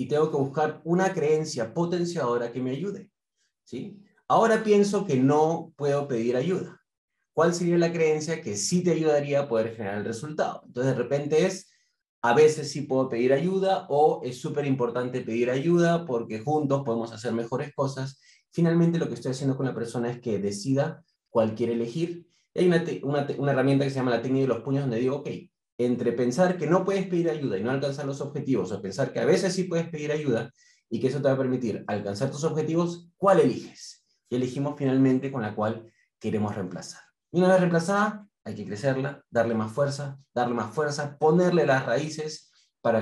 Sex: male